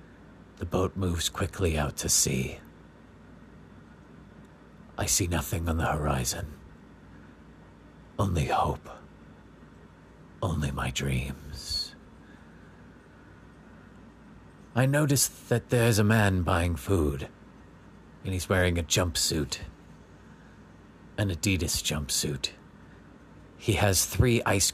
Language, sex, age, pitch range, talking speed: English, male, 50-69, 75-95 Hz, 90 wpm